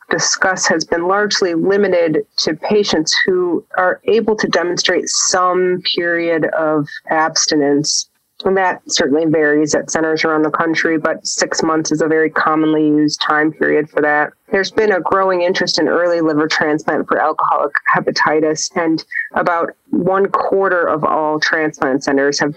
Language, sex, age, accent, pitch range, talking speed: English, female, 30-49, American, 155-190 Hz, 155 wpm